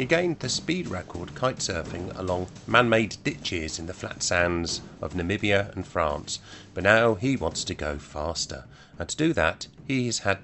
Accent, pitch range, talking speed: British, 85-115 Hz, 180 wpm